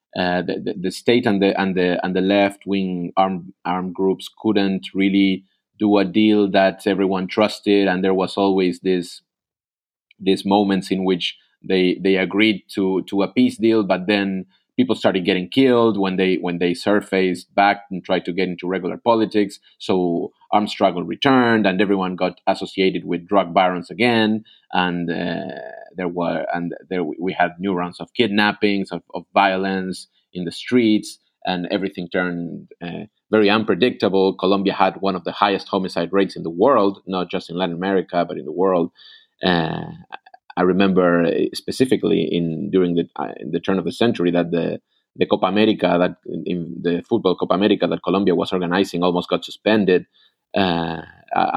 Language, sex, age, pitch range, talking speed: English, male, 30-49, 90-100 Hz, 175 wpm